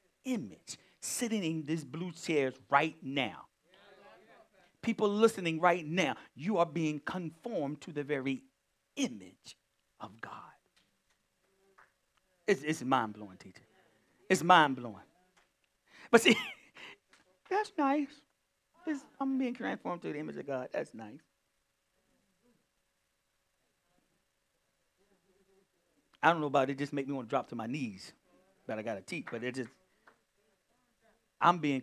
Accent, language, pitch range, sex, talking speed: American, English, 150-225 Hz, male, 130 wpm